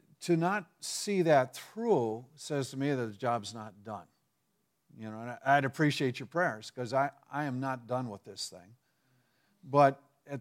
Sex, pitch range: male, 130-160 Hz